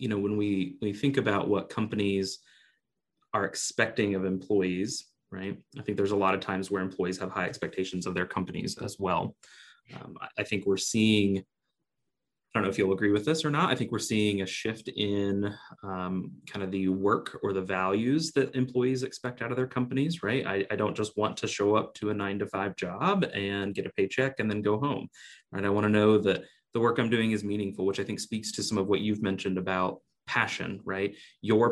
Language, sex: English, male